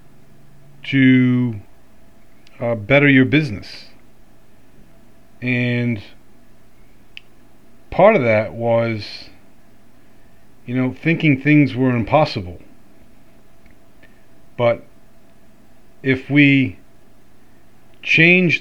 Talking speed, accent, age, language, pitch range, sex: 65 wpm, American, 40-59, English, 110-135 Hz, male